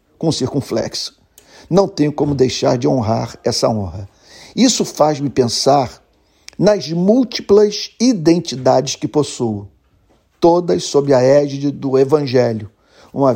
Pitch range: 115-145 Hz